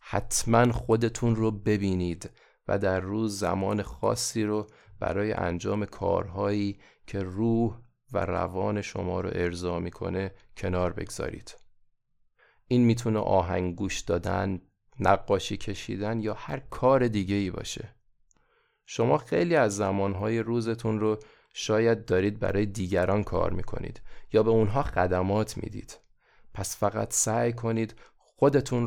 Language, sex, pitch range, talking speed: Persian, male, 95-115 Hz, 125 wpm